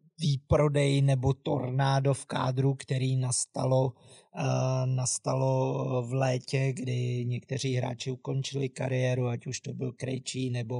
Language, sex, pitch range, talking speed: Czech, male, 130-150 Hz, 115 wpm